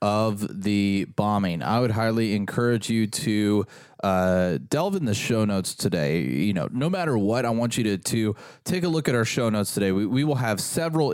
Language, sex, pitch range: English, male, 100-140 Hz